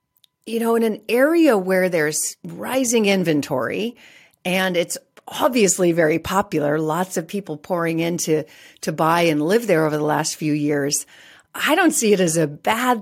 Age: 40-59